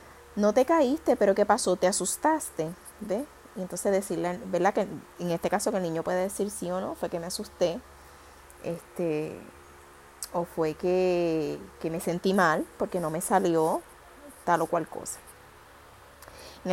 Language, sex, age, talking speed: Spanish, female, 20-39, 165 wpm